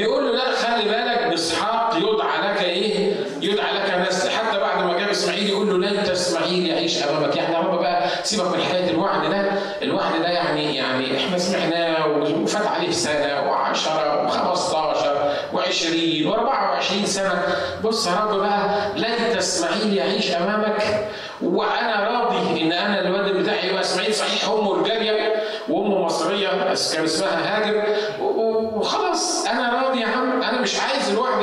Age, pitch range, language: 50-69, 165-210 Hz, Arabic